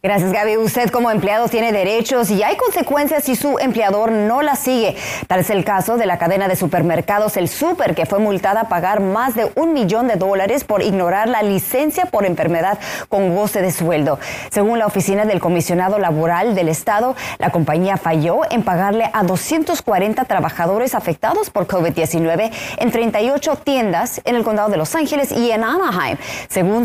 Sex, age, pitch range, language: female, 30-49, 185-240 Hz, Spanish